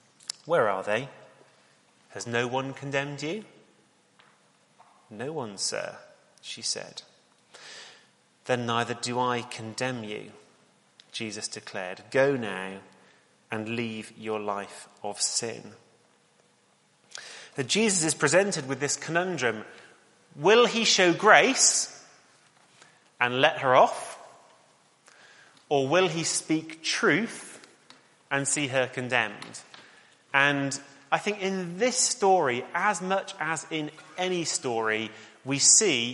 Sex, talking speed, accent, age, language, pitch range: male, 110 wpm, British, 30-49, English, 125-190 Hz